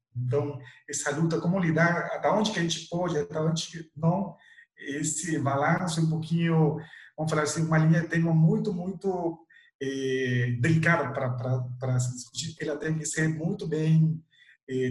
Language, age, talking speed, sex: Portuguese, 40-59, 160 wpm, male